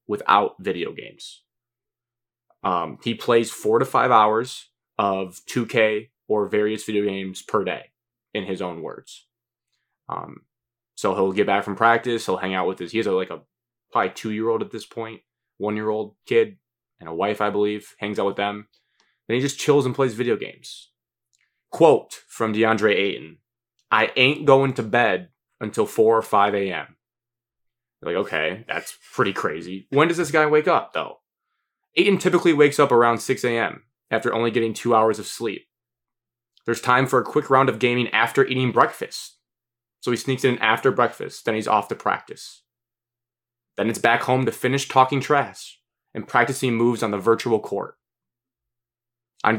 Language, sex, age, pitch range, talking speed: English, male, 20-39, 110-125 Hz, 170 wpm